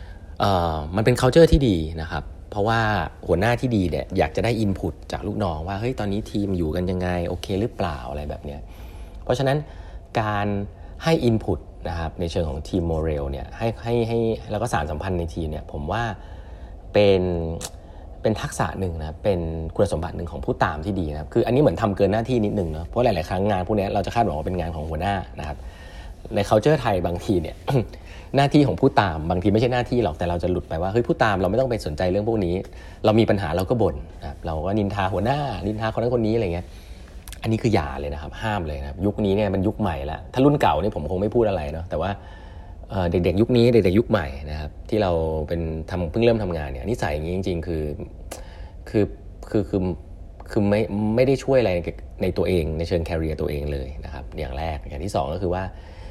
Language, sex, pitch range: English, male, 80-105 Hz